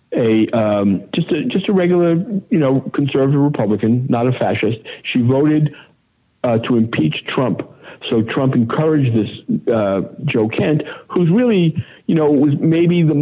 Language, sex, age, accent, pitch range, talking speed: English, male, 60-79, American, 115-140 Hz, 155 wpm